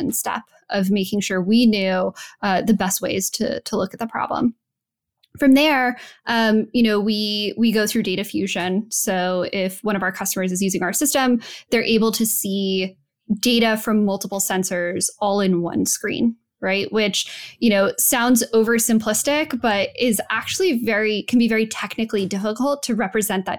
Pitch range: 195-230 Hz